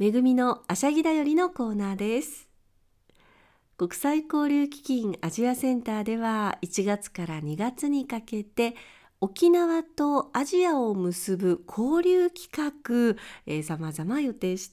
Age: 40-59